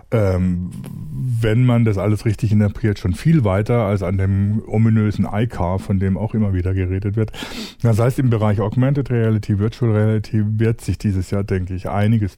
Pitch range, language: 100-115 Hz, German